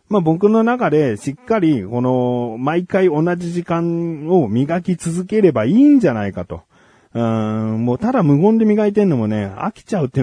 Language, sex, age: Japanese, male, 40-59